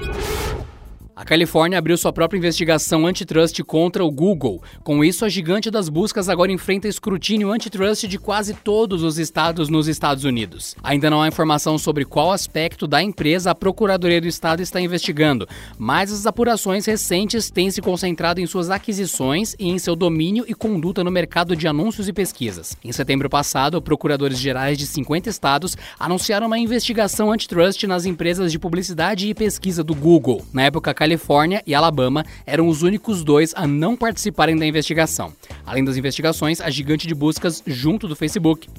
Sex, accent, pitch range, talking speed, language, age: male, Brazilian, 150-195 Hz, 170 wpm, Portuguese, 20-39